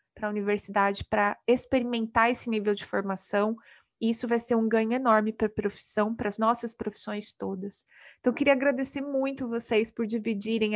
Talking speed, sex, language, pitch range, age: 180 wpm, female, Portuguese, 220-255 Hz, 30-49